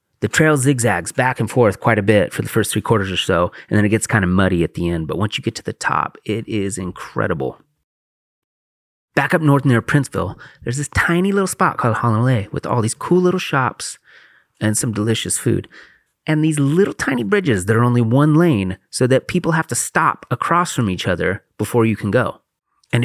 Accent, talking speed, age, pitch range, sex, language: American, 215 wpm, 30-49, 105-150 Hz, male, English